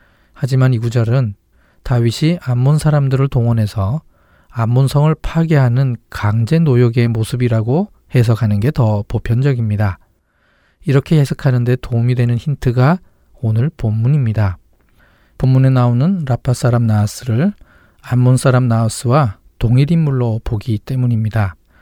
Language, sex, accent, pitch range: Korean, male, native, 115-140 Hz